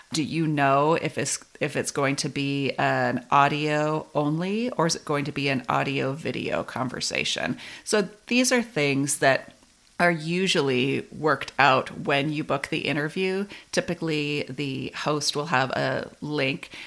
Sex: female